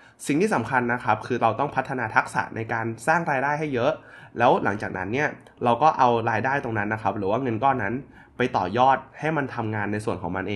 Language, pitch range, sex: Thai, 110-135 Hz, male